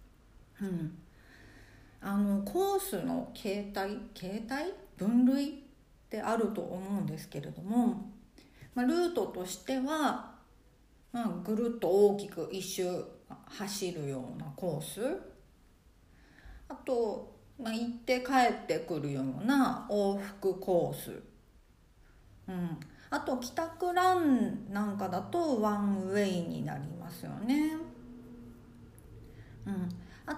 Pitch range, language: 175-260 Hz, Japanese